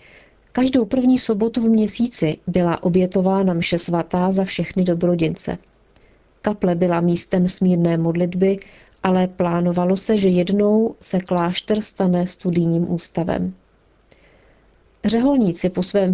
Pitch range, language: 175-195 Hz, Czech